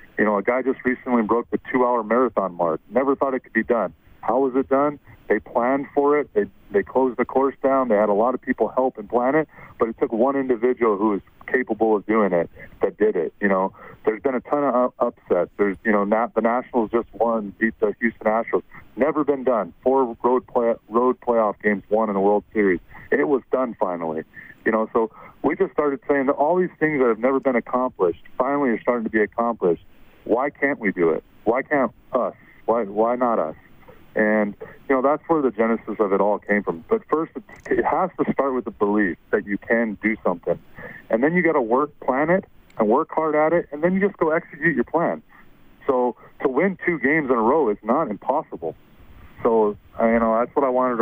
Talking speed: 225 wpm